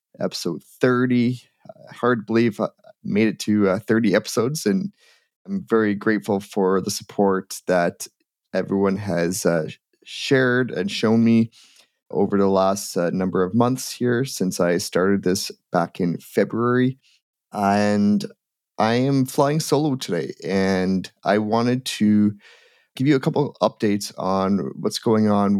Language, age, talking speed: English, 30-49, 145 wpm